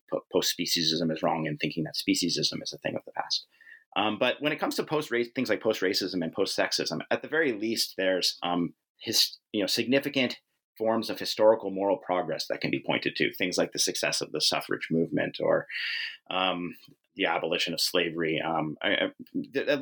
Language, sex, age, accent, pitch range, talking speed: English, male, 30-49, American, 90-130 Hz, 205 wpm